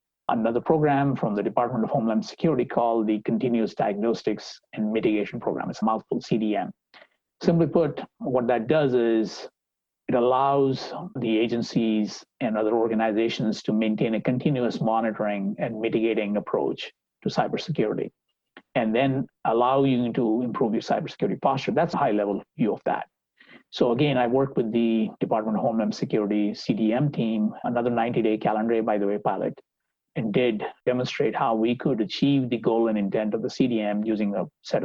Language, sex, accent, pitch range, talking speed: English, male, Indian, 110-140 Hz, 160 wpm